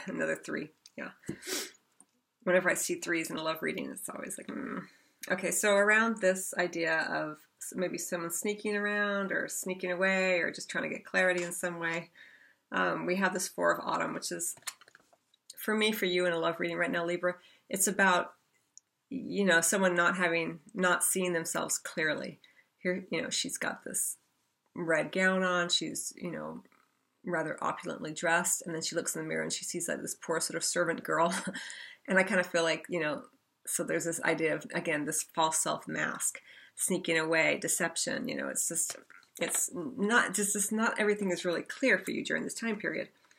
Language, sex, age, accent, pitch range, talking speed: English, female, 30-49, American, 170-200 Hz, 195 wpm